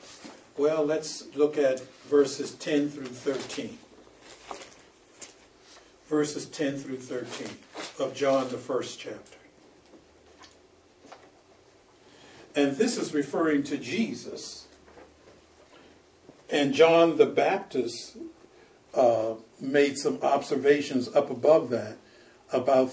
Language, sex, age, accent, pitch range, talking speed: English, male, 60-79, American, 135-200 Hz, 90 wpm